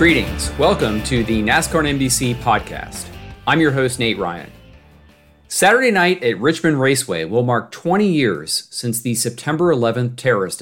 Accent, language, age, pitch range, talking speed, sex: American, English, 40-59, 115-160 Hz, 145 wpm, male